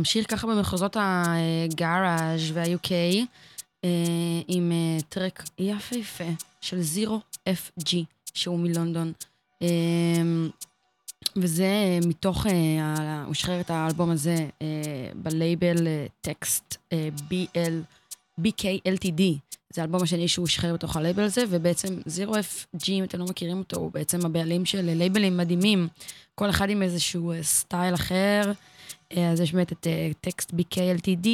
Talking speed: 105 wpm